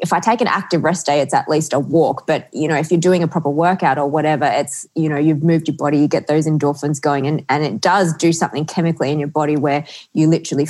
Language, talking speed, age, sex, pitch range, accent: English, 270 wpm, 20-39, female, 140-160 Hz, Australian